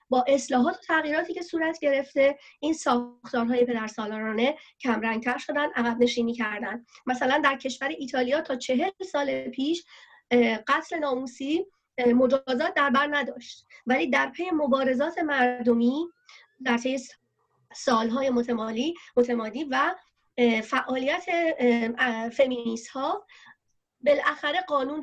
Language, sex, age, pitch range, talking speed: Persian, female, 30-49, 240-305 Hz, 100 wpm